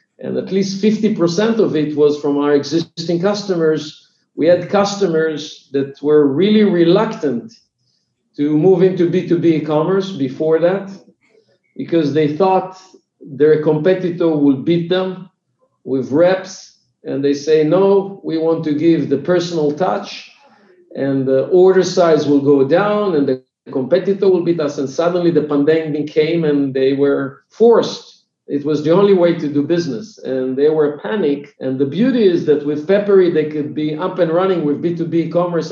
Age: 50-69